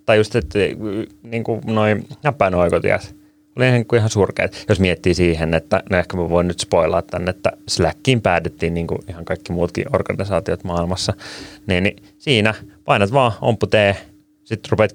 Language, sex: Finnish, male